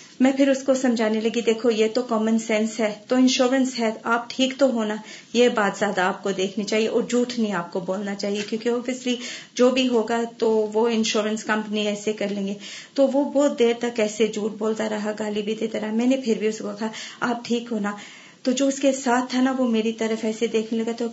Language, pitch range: Urdu, 215-250 Hz